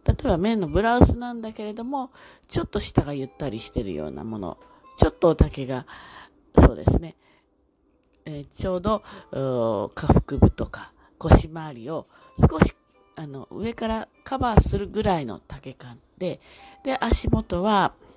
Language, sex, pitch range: Japanese, female, 125-195 Hz